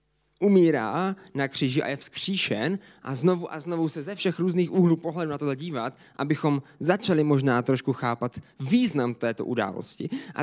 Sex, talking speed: male, 160 wpm